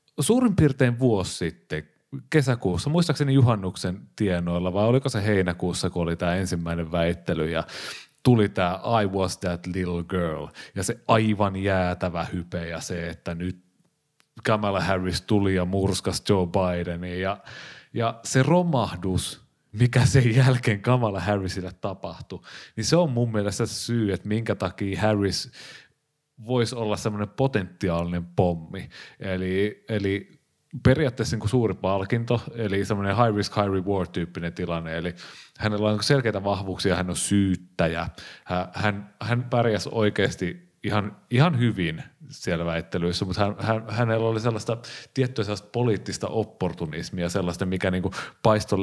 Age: 30-49